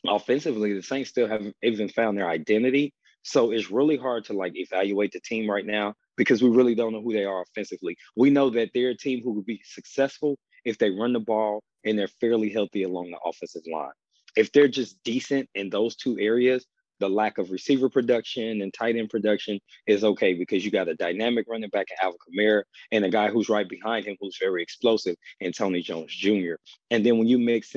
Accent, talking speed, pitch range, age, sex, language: American, 215 wpm, 100-120 Hz, 20-39, male, English